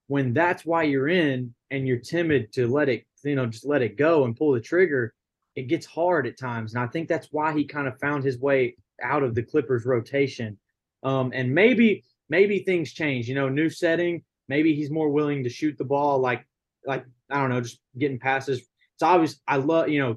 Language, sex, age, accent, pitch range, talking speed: English, male, 20-39, American, 125-150 Hz, 220 wpm